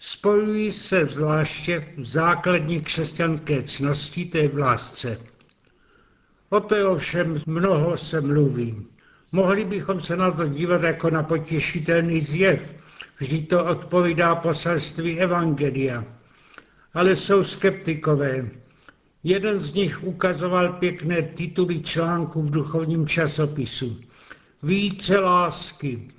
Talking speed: 105 wpm